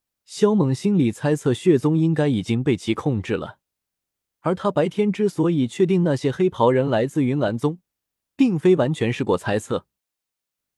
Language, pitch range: Chinese, 115-175 Hz